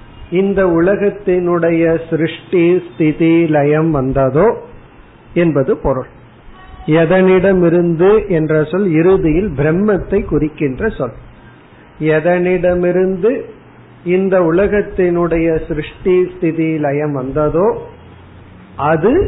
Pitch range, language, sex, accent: 145-185 Hz, Tamil, male, native